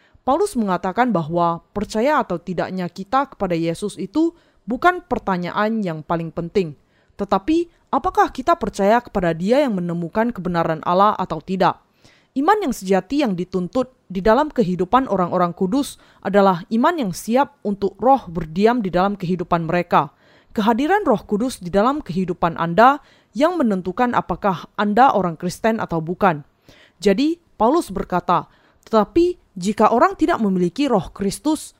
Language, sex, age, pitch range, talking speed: Indonesian, female, 20-39, 180-250 Hz, 140 wpm